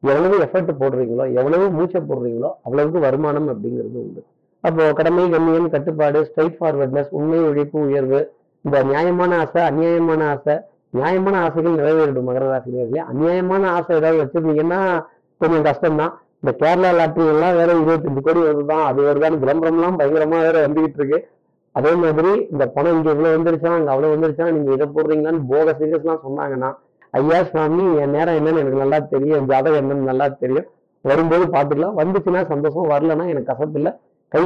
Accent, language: native, Tamil